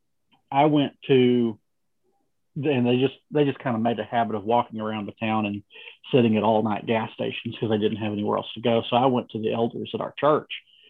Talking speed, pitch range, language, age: 230 wpm, 110-130 Hz, English, 40-59